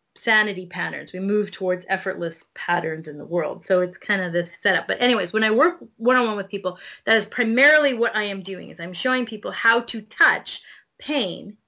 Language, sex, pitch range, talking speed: English, female, 190-245 Hz, 200 wpm